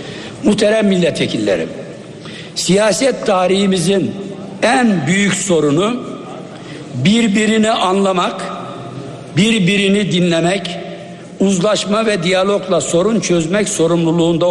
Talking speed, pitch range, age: 70 wpm, 175-205 Hz, 60-79